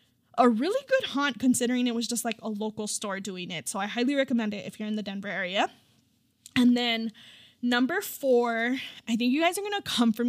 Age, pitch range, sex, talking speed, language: 10-29, 205-255 Hz, female, 220 wpm, English